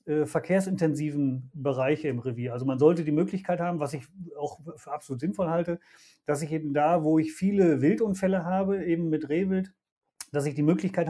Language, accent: German, German